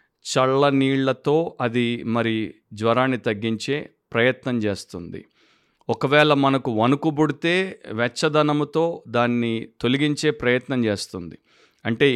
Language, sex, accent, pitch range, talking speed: Telugu, male, native, 115-160 Hz, 80 wpm